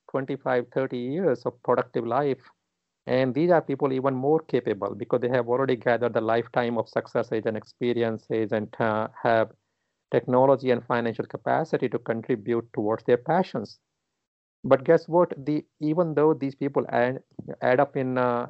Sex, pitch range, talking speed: male, 115-140 Hz, 160 wpm